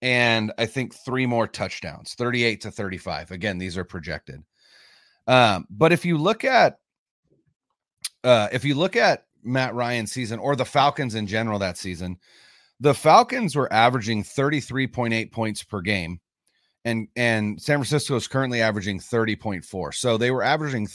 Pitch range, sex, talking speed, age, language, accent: 105-140 Hz, male, 155 wpm, 30-49, English, American